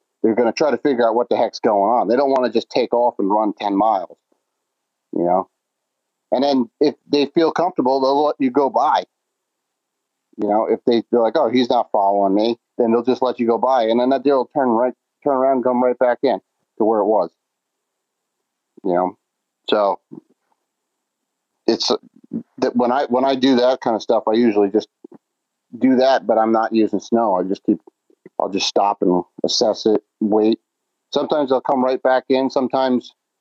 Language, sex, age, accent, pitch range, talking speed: English, male, 40-59, American, 115-135 Hz, 205 wpm